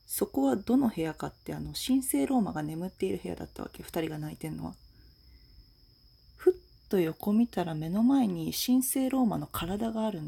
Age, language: 40-59, Japanese